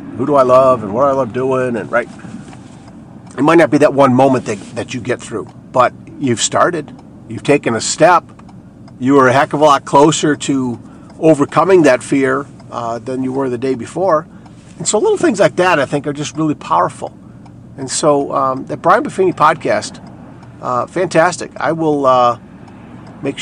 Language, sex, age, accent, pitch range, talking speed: English, male, 50-69, American, 115-145 Hz, 190 wpm